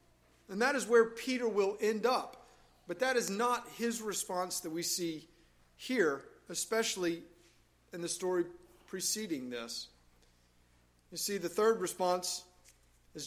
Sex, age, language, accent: male, 40-59, English, American